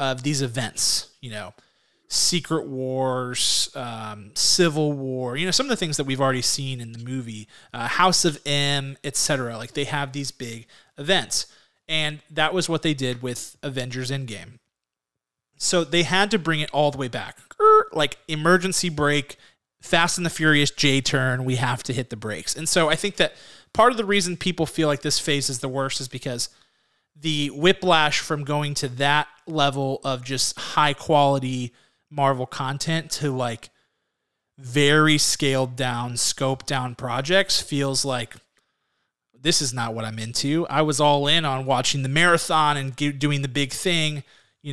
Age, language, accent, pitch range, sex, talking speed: 30-49, English, American, 130-155 Hz, male, 175 wpm